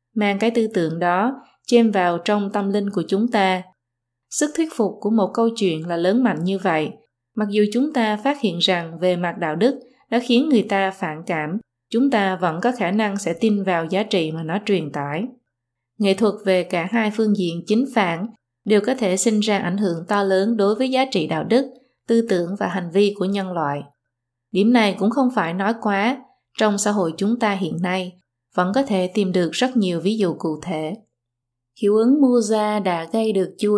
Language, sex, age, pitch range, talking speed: Vietnamese, female, 20-39, 175-220 Hz, 215 wpm